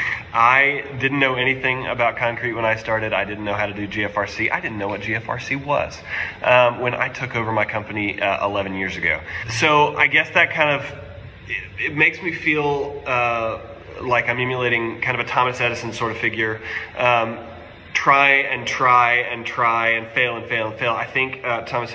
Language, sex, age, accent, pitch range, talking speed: English, male, 30-49, American, 105-135 Hz, 195 wpm